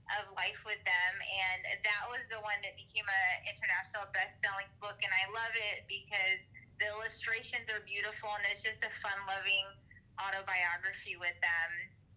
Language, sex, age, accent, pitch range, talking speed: English, female, 20-39, American, 190-215 Hz, 165 wpm